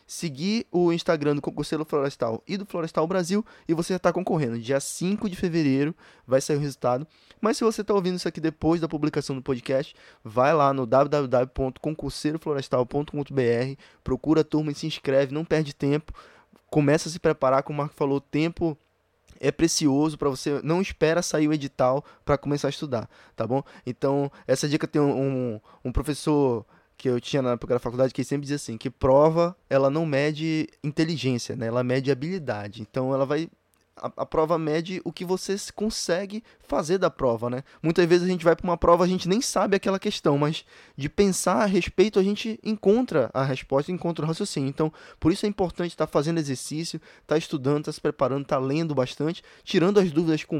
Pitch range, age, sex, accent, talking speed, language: 135-170 Hz, 20-39, male, Brazilian, 200 wpm, Portuguese